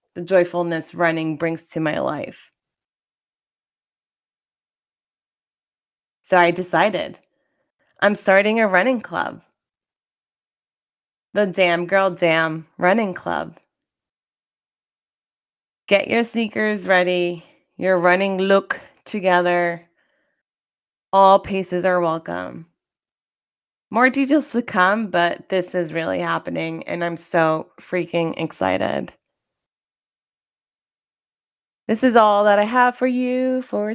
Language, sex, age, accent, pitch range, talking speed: English, female, 20-39, American, 175-250 Hz, 100 wpm